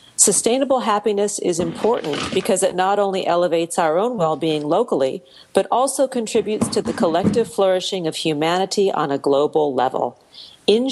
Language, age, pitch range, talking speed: English, 40-59, 160-210 Hz, 150 wpm